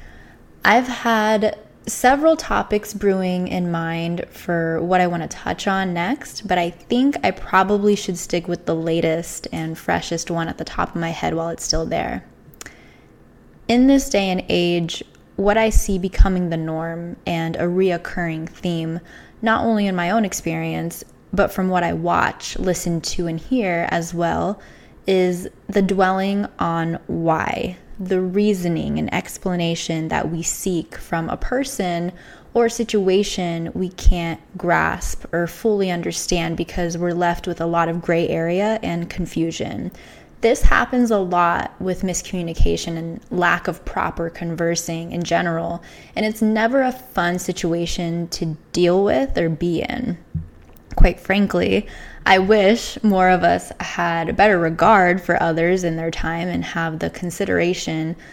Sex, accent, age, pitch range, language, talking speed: female, American, 10-29, 165-200 Hz, English, 155 wpm